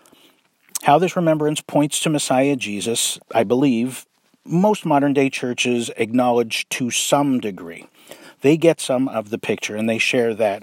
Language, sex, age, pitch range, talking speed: English, male, 50-69, 125-165 Hz, 145 wpm